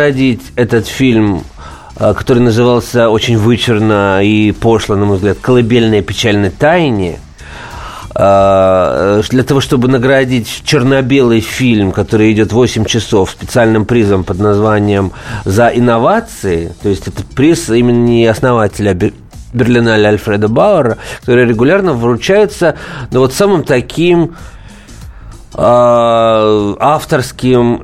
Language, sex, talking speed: Russian, male, 105 wpm